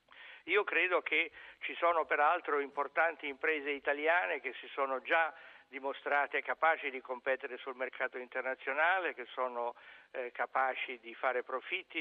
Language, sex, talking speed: Italian, male, 135 wpm